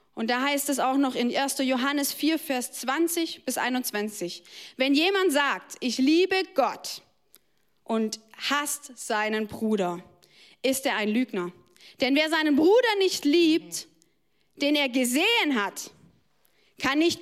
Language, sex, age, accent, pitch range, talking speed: German, female, 20-39, German, 265-365 Hz, 140 wpm